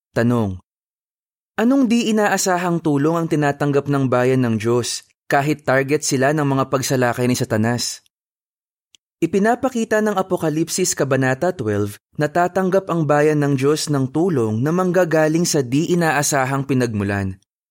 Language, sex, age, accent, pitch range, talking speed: Filipino, male, 20-39, native, 125-155 Hz, 130 wpm